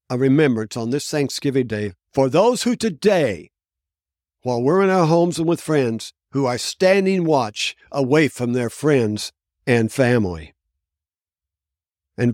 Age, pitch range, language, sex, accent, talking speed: 60-79, 105-155 Hz, English, male, American, 140 wpm